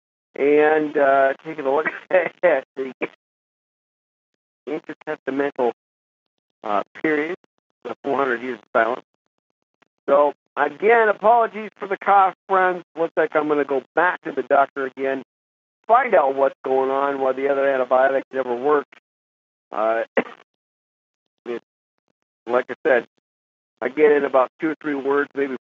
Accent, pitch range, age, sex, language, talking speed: American, 115-150 Hz, 50-69, male, English, 135 wpm